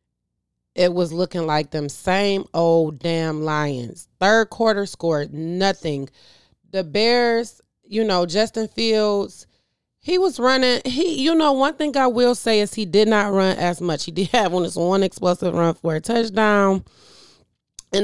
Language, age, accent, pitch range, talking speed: English, 30-49, American, 165-215 Hz, 165 wpm